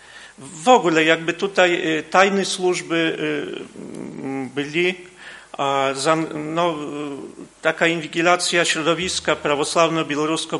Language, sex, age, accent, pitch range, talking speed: Polish, male, 40-59, native, 150-185 Hz, 80 wpm